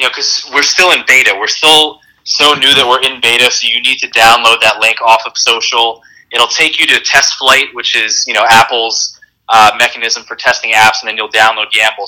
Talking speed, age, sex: 230 wpm, 20-39, male